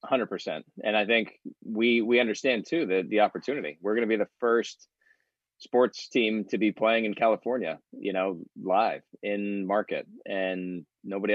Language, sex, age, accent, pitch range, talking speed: English, male, 20-39, American, 90-105 Hz, 170 wpm